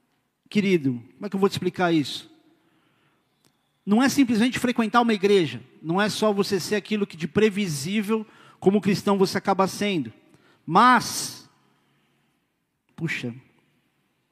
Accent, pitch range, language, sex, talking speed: Brazilian, 145-180 Hz, Portuguese, male, 130 wpm